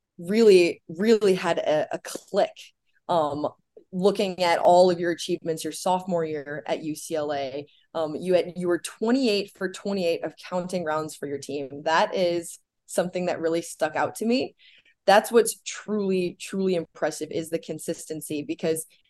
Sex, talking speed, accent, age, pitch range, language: female, 155 wpm, American, 20-39, 160-190 Hz, English